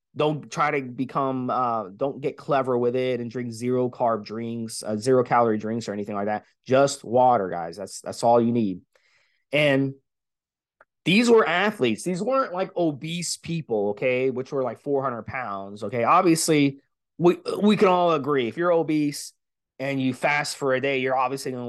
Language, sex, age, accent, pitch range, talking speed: English, male, 30-49, American, 125-175 Hz, 175 wpm